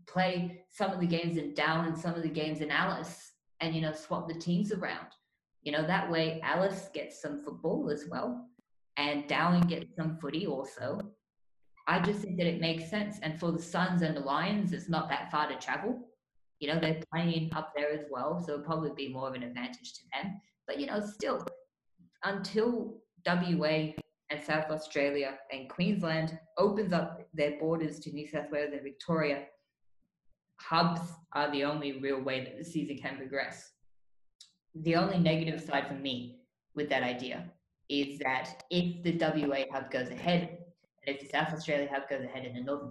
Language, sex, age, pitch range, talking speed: English, female, 20-39, 140-170 Hz, 190 wpm